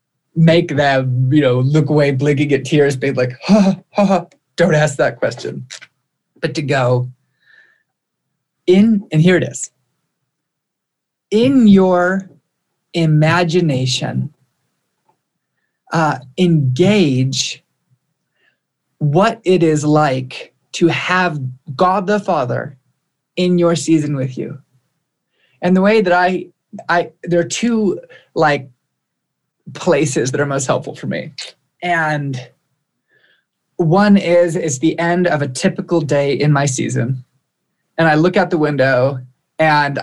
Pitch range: 135-175 Hz